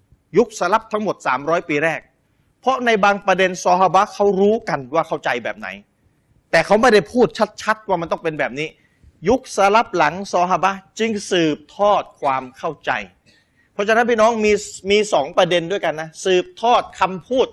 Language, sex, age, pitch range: Thai, male, 30-49, 145-205 Hz